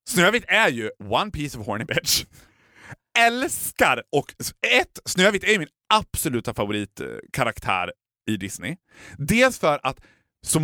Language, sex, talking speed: Swedish, male, 130 wpm